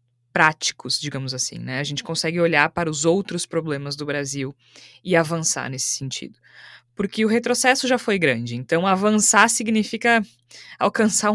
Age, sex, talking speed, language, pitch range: 20-39, female, 150 wpm, Portuguese, 145-205 Hz